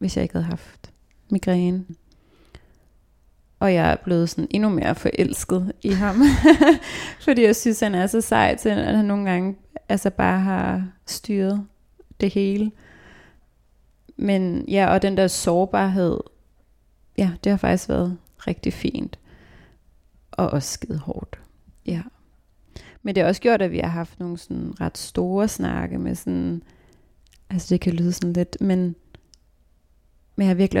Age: 30-49